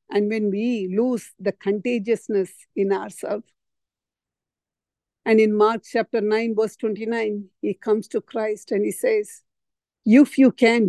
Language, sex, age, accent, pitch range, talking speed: English, female, 50-69, Indian, 210-250 Hz, 140 wpm